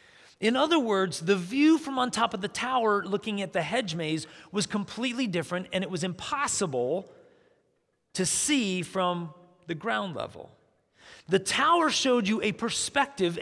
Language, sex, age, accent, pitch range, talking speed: English, male, 40-59, American, 180-235 Hz, 155 wpm